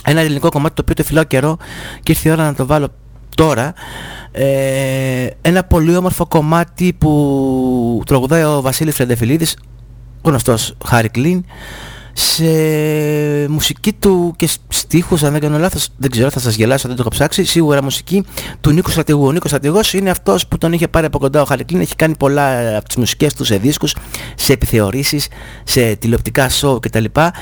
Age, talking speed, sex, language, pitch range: 30-49, 175 wpm, male, English, 125-165 Hz